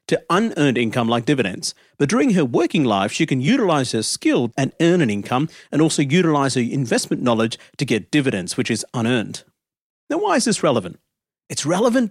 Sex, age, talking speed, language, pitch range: male, 40-59, 190 wpm, English, 130-165 Hz